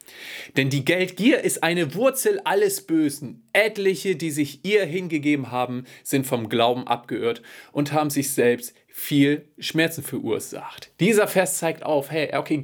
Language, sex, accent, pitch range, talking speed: German, male, German, 130-180 Hz, 145 wpm